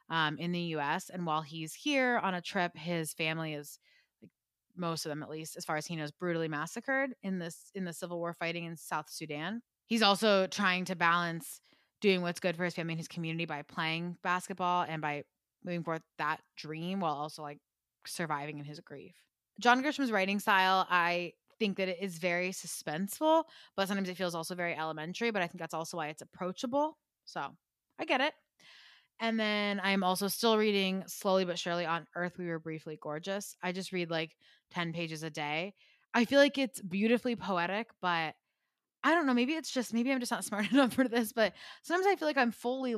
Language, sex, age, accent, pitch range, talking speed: English, female, 20-39, American, 165-225 Hz, 205 wpm